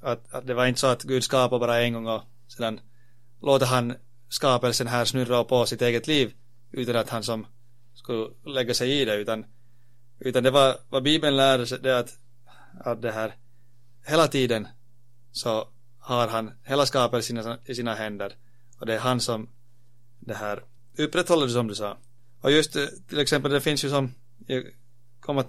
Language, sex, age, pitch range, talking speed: Swedish, male, 30-49, 120-135 Hz, 180 wpm